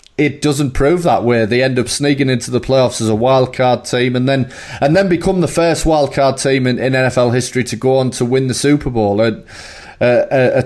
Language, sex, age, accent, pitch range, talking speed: English, male, 30-49, British, 115-140 Hz, 235 wpm